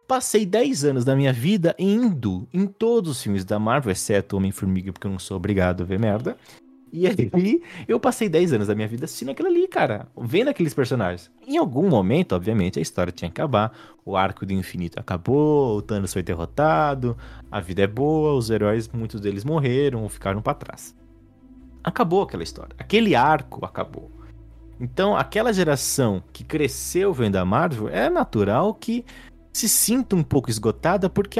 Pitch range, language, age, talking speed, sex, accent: 100-170 Hz, Portuguese, 20-39, 180 wpm, male, Brazilian